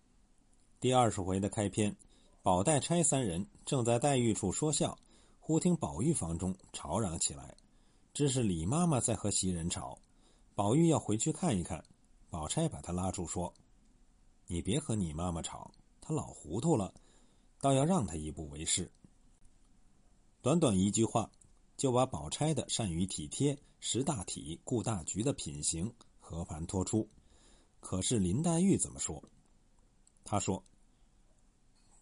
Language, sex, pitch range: Chinese, male, 90-145 Hz